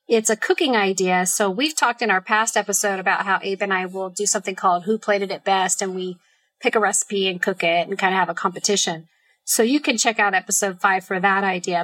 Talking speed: 245 wpm